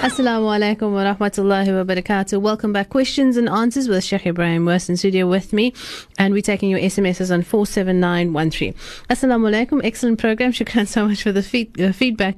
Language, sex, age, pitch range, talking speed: English, female, 30-49, 175-210 Hz, 185 wpm